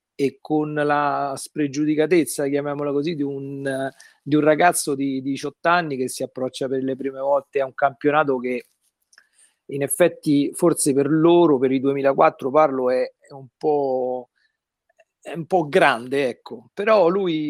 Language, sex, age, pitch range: Italian, male, 40-59, 135-155 Hz